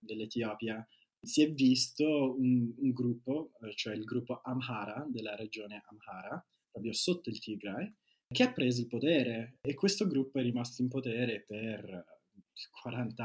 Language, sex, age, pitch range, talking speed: Italian, male, 20-39, 105-135 Hz, 145 wpm